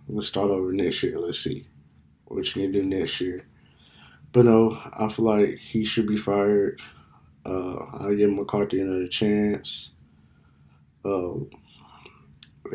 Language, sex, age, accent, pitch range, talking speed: English, male, 20-39, American, 75-110 Hz, 150 wpm